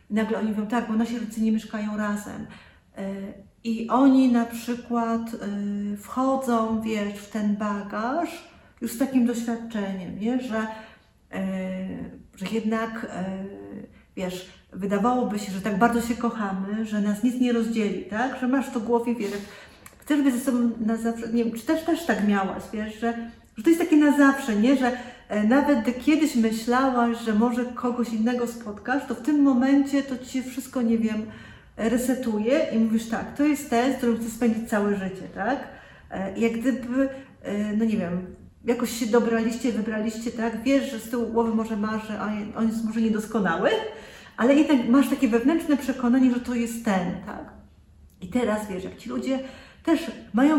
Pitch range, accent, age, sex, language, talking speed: 215-255 Hz, native, 40-59, female, Polish, 170 wpm